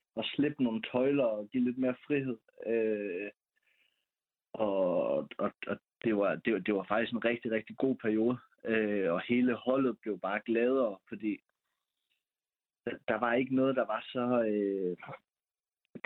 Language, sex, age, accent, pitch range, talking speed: Danish, male, 30-49, native, 105-125 Hz, 150 wpm